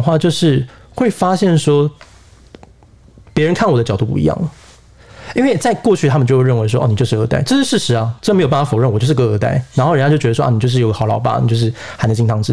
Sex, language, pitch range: male, Chinese, 115-150 Hz